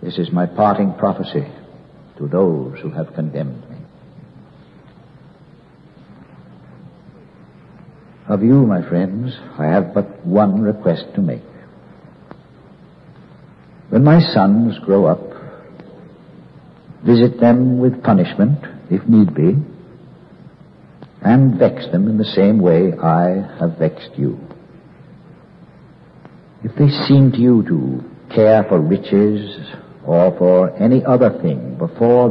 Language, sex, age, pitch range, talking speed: English, male, 60-79, 95-135 Hz, 110 wpm